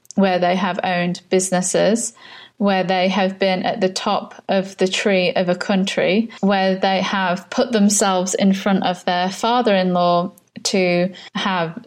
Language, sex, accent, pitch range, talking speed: English, female, British, 185-225 Hz, 150 wpm